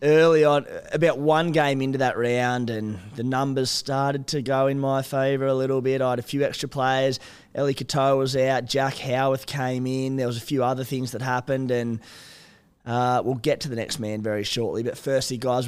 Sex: male